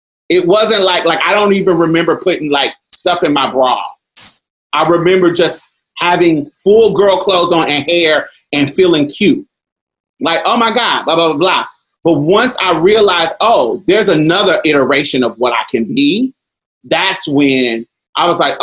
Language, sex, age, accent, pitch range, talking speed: English, male, 30-49, American, 140-210 Hz, 170 wpm